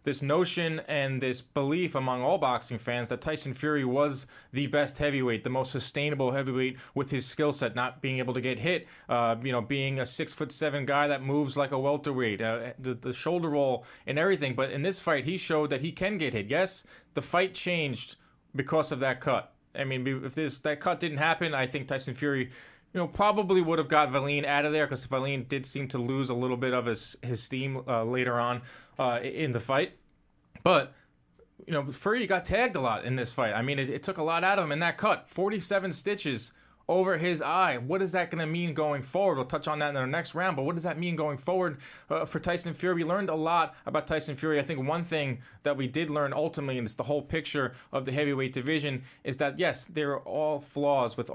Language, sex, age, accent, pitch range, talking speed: English, male, 20-39, American, 130-160 Hz, 235 wpm